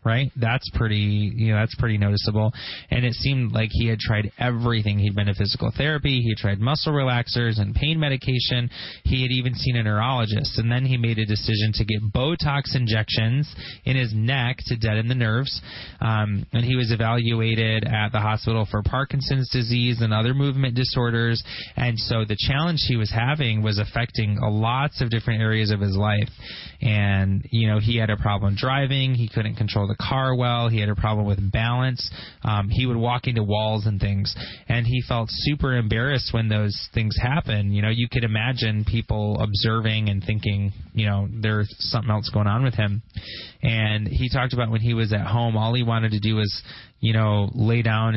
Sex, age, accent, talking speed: male, 20-39, American, 195 wpm